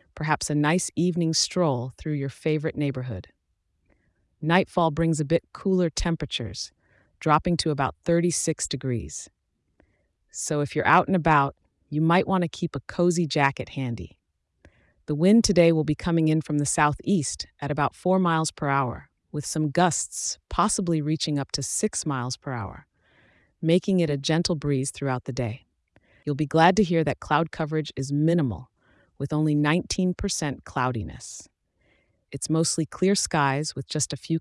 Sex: female